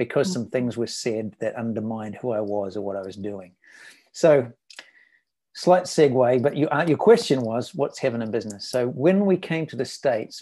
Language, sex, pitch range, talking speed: English, male, 115-140 Hz, 200 wpm